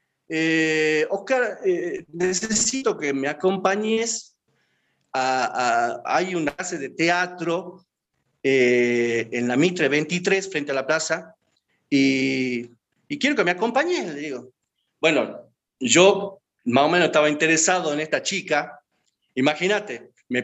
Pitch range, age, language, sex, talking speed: 145-215 Hz, 40-59, Spanish, male, 130 wpm